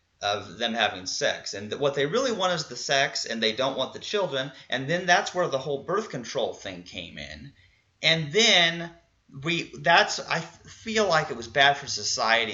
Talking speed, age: 195 wpm, 30-49